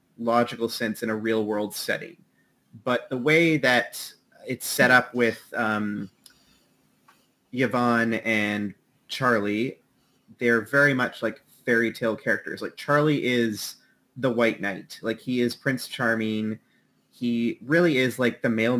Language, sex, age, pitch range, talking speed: English, male, 30-49, 115-140 Hz, 135 wpm